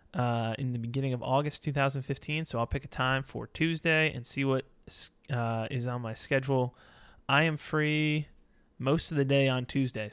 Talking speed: 185 wpm